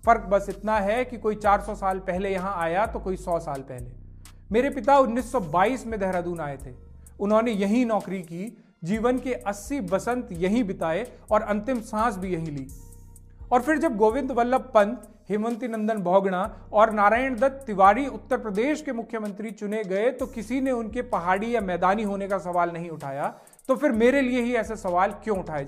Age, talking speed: 40-59, 185 wpm